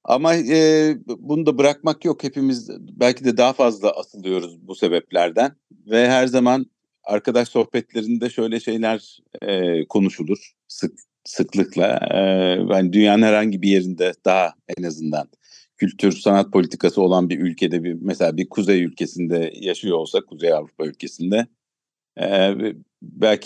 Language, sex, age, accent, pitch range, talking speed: Turkish, male, 50-69, native, 95-125 Hz, 135 wpm